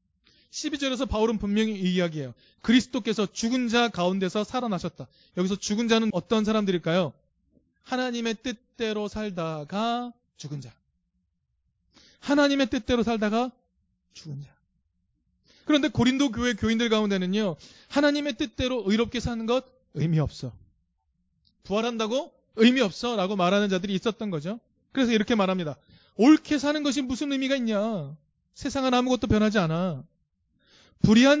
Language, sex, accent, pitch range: Korean, male, native, 170-245 Hz